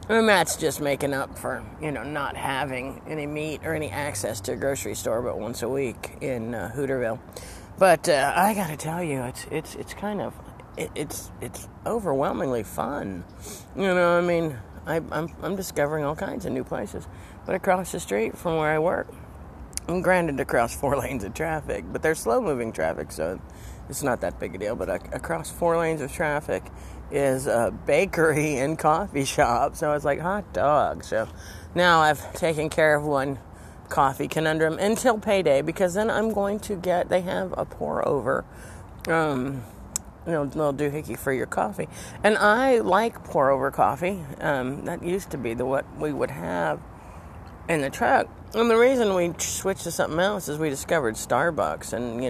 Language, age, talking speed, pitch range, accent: English, 40-59, 190 wpm, 120-175 Hz, American